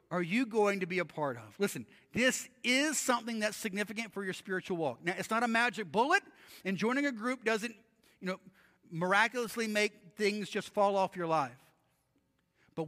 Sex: male